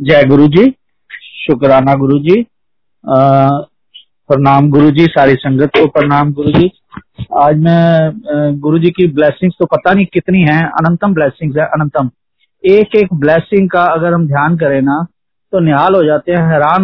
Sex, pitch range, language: male, 145-175 Hz, Hindi